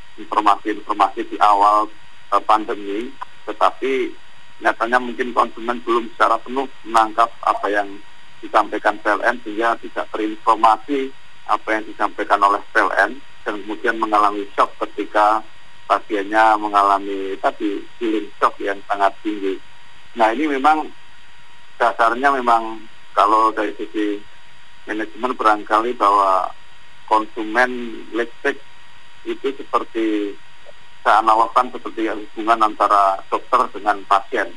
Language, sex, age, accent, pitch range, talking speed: Indonesian, male, 40-59, native, 105-120 Hz, 105 wpm